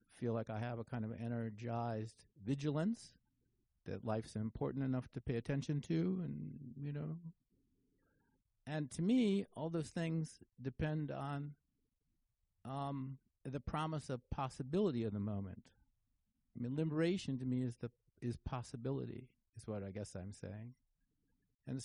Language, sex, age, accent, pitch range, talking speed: English, male, 50-69, American, 115-145 Hz, 145 wpm